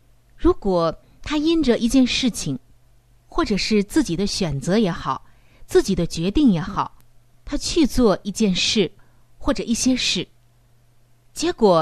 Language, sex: Chinese, female